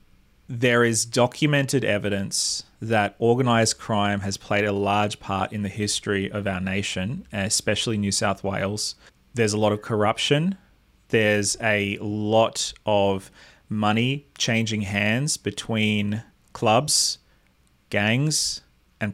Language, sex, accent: English, male, Australian